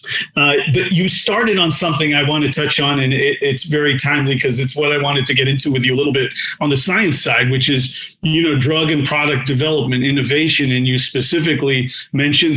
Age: 40-59